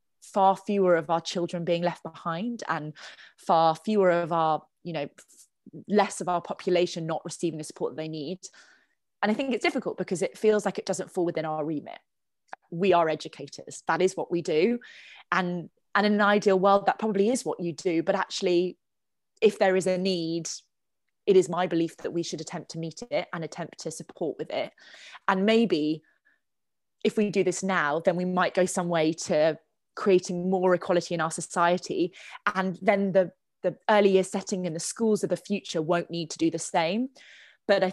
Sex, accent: female, British